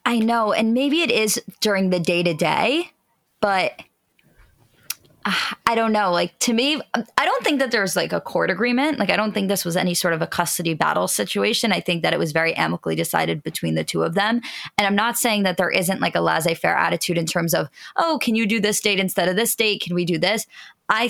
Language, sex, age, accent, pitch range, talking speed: English, female, 20-39, American, 175-235 Hz, 240 wpm